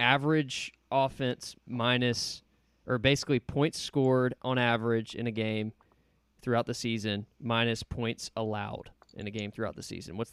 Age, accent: 20-39, American